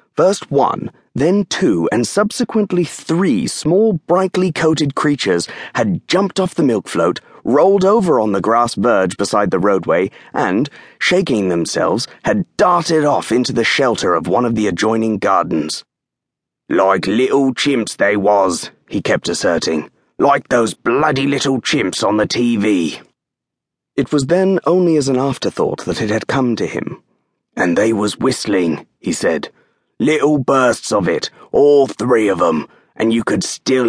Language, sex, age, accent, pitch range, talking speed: English, male, 30-49, British, 110-175 Hz, 155 wpm